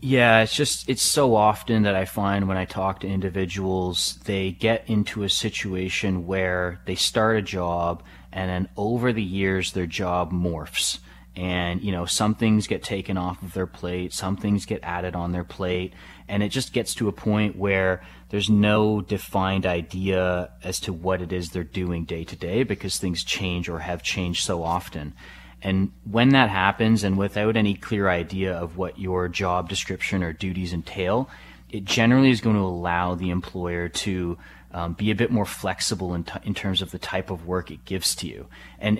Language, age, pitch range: English, 30-49, 90-105 Hz